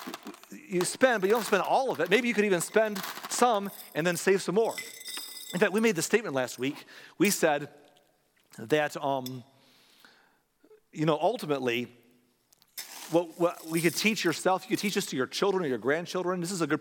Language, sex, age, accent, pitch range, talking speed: English, male, 40-59, American, 145-195 Hz, 195 wpm